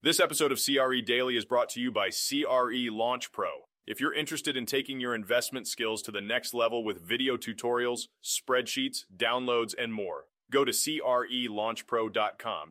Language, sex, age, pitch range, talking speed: English, male, 30-49, 110-130 Hz, 165 wpm